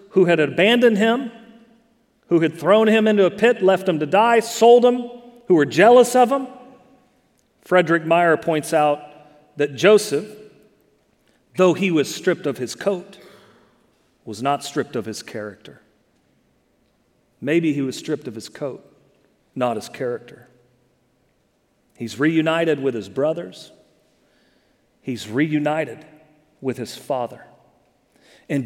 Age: 40-59